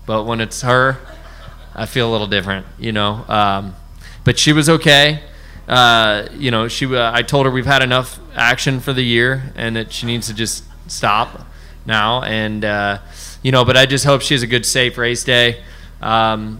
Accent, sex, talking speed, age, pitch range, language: American, male, 195 wpm, 20-39, 100-125 Hz, English